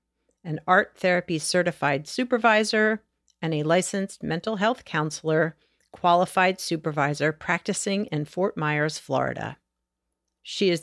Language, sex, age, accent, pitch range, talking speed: English, female, 50-69, American, 145-195 Hz, 110 wpm